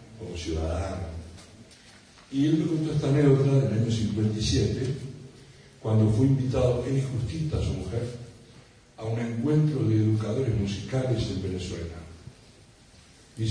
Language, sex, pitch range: Spanish, male, 105-135 Hz